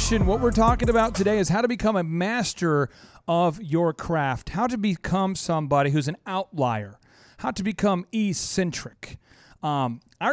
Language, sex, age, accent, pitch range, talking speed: English, male, 40-59, American, 140-185 Hz, 155 wpm